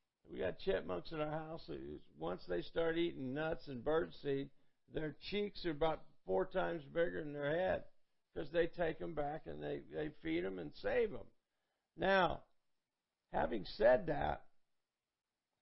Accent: American